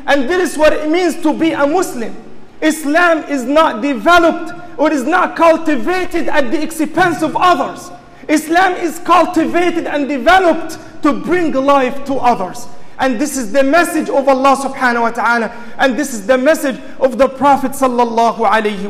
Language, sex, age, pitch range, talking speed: English, male, 40-59, 255-325 Hz, 170 wpm